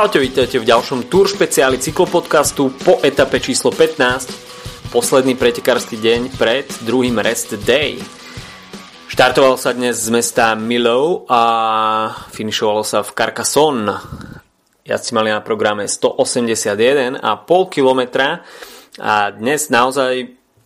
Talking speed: 105 wpm